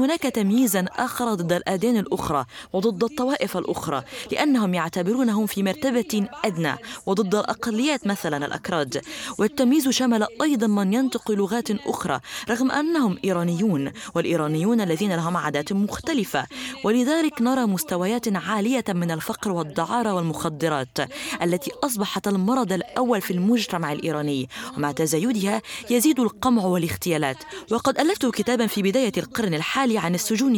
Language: Arabic